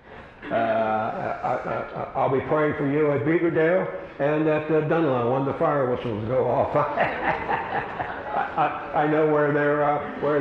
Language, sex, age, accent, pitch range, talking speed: English, male, 60-79, American, 150-190 Hz, 165 wpm